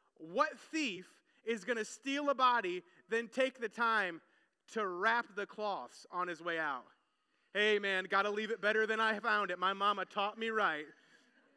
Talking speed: 175 wpm